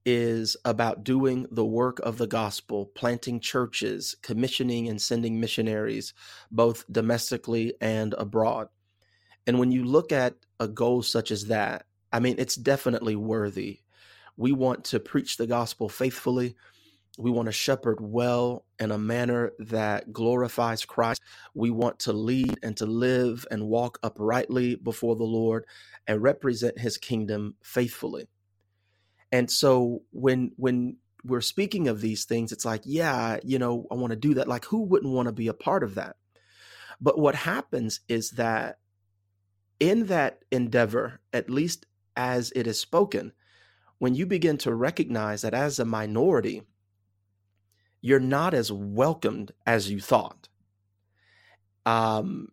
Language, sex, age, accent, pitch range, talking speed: English, male, 30-49, American, 105-125 Hz, 145 wpm